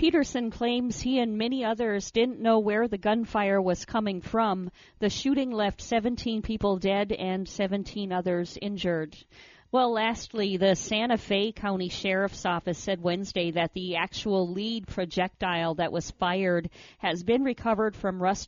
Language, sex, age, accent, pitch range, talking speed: English, female, 50-69, American, 180-220 Hz, 155 wpm